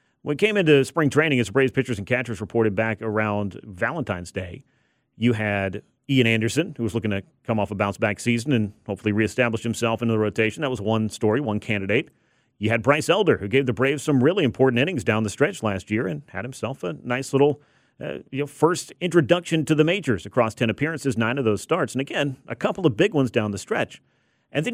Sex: male